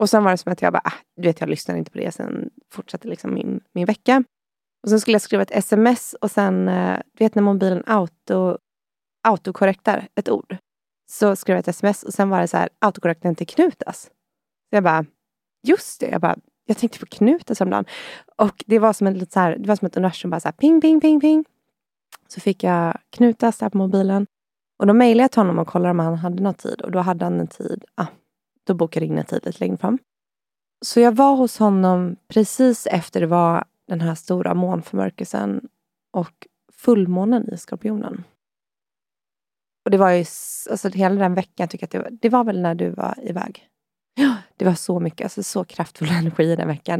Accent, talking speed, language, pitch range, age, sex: native, 210 wpm, Swedish, 175-220 Hz, 20-39, female